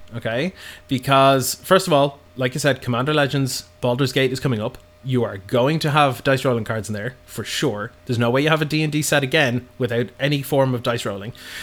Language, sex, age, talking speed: English, male, 20-39, 225 wpm